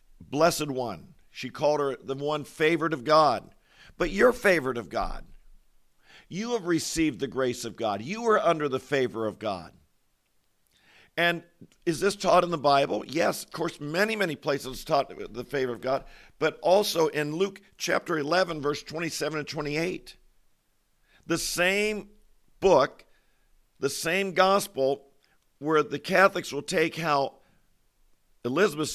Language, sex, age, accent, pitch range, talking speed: English, male, 50-69, American, 140-170 Hz, 145 wpm